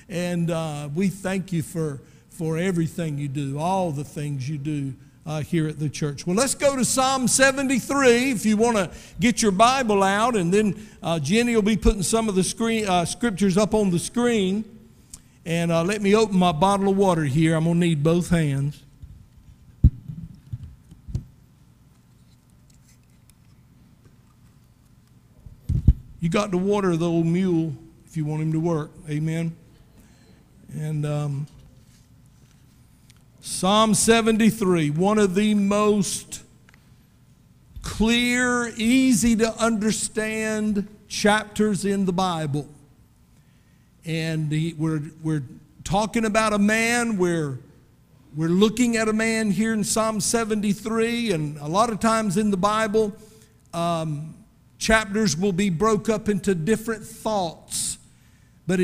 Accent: American